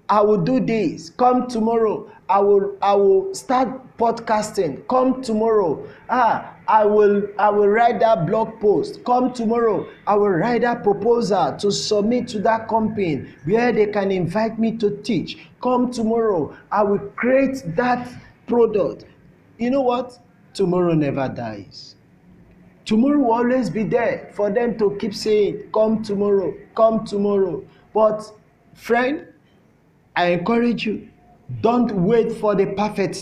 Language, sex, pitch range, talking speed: English, male, 200-240 Hz, 145 wpm